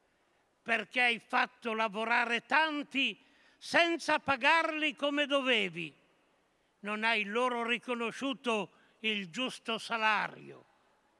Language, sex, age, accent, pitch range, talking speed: Italian, male, 60-79, native, 220-270 Hz, 85 wpm